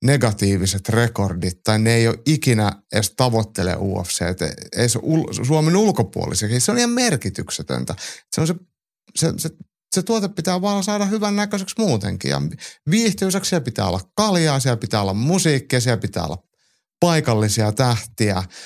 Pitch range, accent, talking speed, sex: 105-140 Hz, native, 140 wpm, male